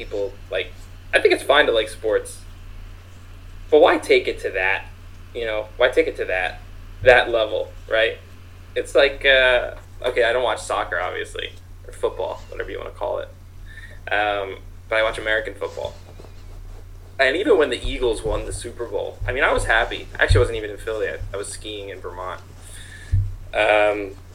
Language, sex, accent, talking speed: English, male, American, 185 wpm